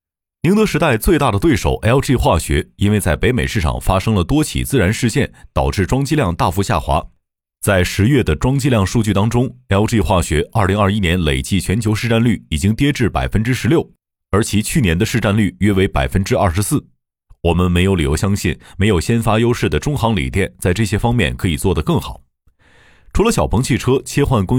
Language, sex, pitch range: Chinese, male, 90-120 Hz